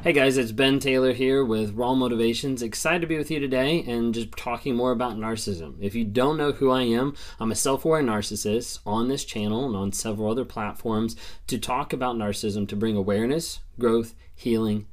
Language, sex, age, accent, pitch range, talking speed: English, male, 20-39, American, 100-125 Hz, 195 wpm